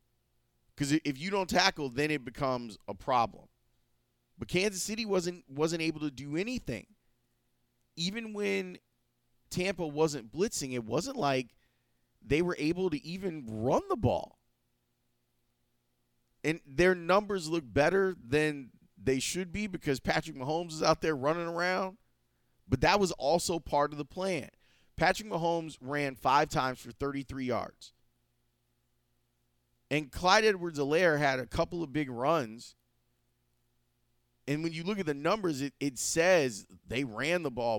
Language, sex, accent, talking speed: English, male, American, 145 wpm